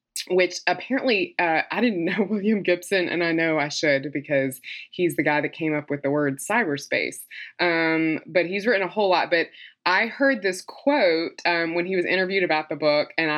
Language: English